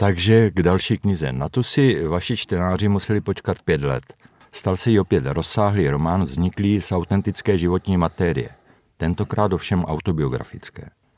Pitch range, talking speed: 80-100 Hz, 145 wpm